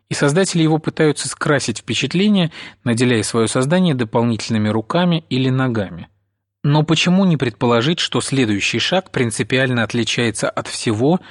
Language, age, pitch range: Russian, 30-49, 110-145 Hz